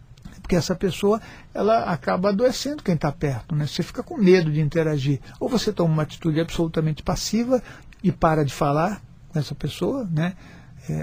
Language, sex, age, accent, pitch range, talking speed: Portuguese, male, 60-79, Brazilian, 145-190 Hz, 175 wpm